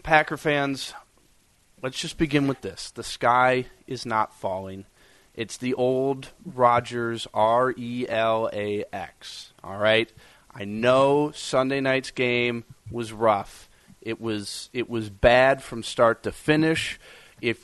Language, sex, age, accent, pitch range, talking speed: English, male, 30-49, American, 110-145 Hz, 120 wpm